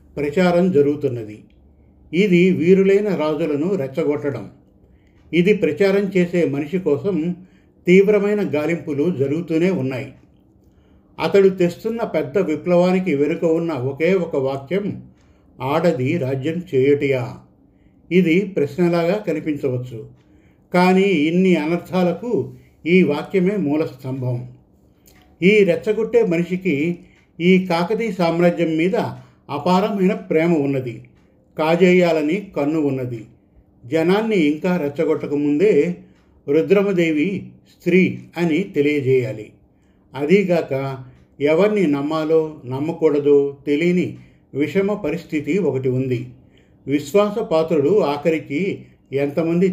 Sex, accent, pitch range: male, native, 140-180 Hz